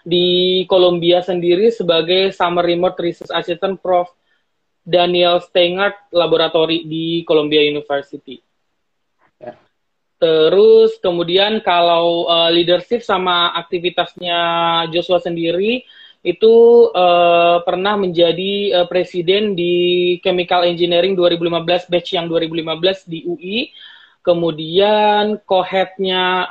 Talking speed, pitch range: 95 wpm, 165-190 Hz